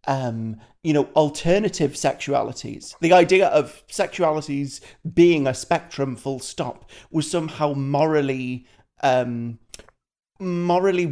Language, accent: English, British